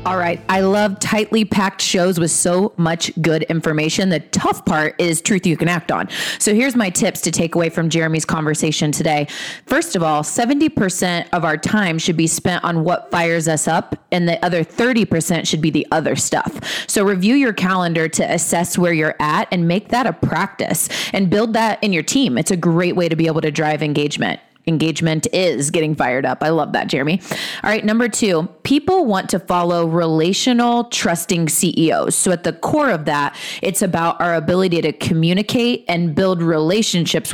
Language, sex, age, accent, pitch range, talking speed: English, female, 20-39, American, 160-195 Hz, 195 wpm